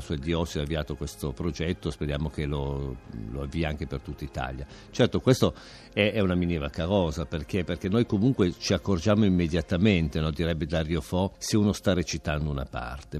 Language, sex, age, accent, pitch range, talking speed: Italian, male, 50-69, native, 80-100 Hz, 180 wpm